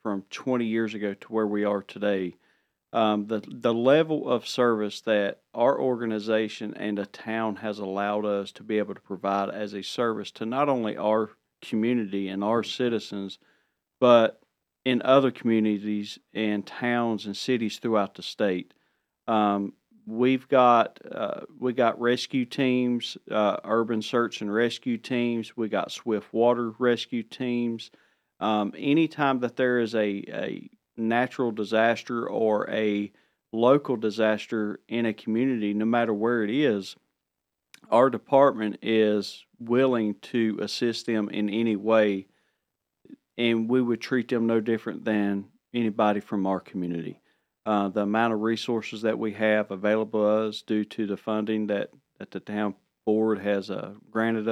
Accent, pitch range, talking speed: American, 105-120 Hz, 150 wpm